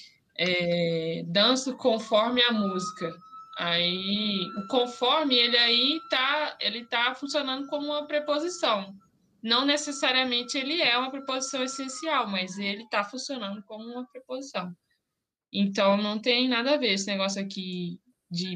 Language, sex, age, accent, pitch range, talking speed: Portuguese, female, 10-29, Brazilian, 195-250 Hz, 135 wpm